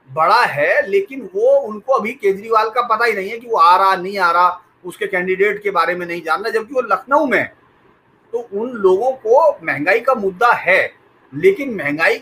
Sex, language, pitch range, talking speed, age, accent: male, English, 170-275 Hz, 195 wpm, 40-59, Indian